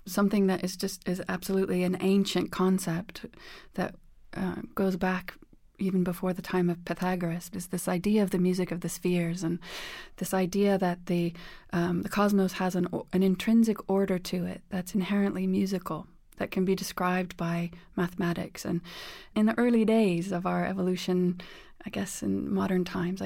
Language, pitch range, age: English, 180-195 Hz, 30-49